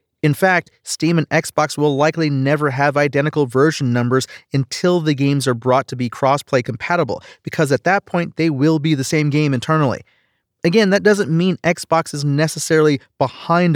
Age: 30-49